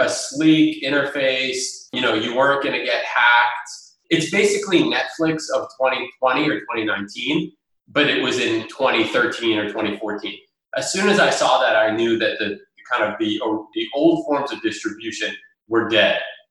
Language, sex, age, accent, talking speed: English, male, 30-49, American, 165 wpm